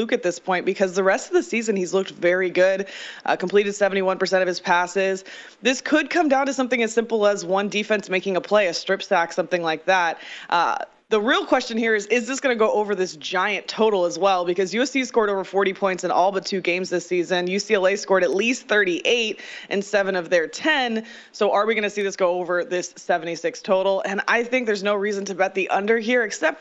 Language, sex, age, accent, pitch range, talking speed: English, female, 20-39, American, 180-220 Hz, 235 wpm